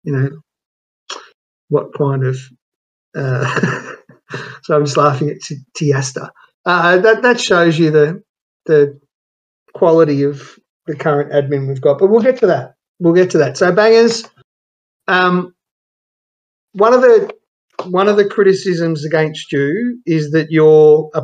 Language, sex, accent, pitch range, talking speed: English, male, Australian, 145-165 Hz, 145 wpm